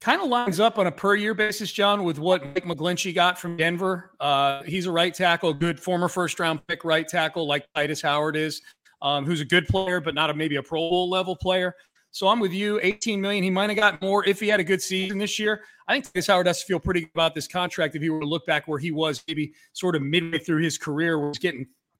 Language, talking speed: English, 255 wpm